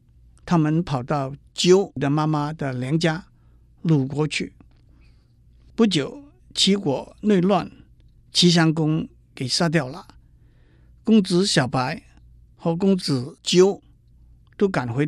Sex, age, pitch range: male, 50-69, 135-190 Hz